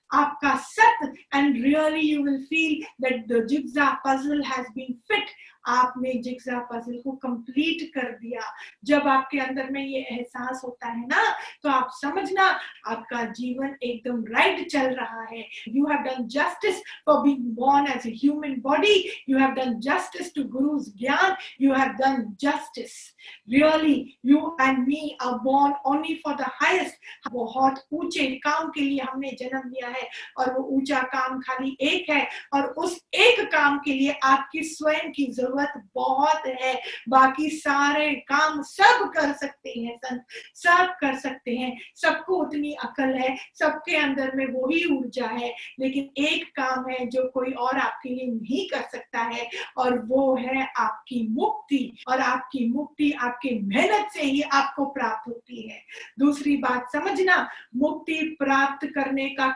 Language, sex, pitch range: Hindi, female, 255-295 Hz